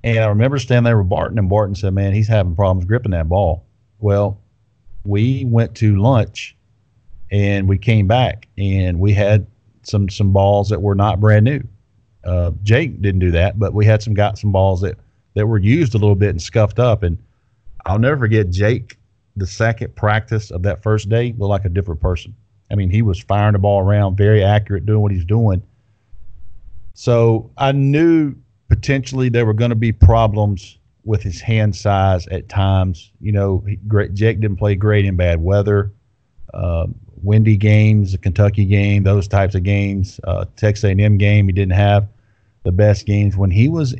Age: 40-59